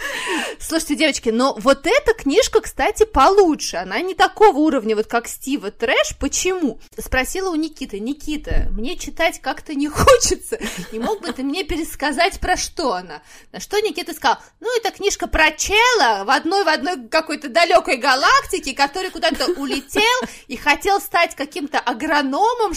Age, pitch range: 20-39, 250-360 Hz